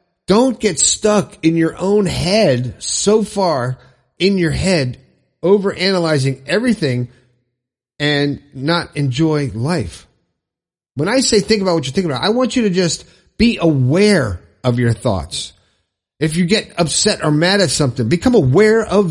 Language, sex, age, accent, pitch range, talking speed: English, male, 50-69, American, 130-195 Hz, 150 wpm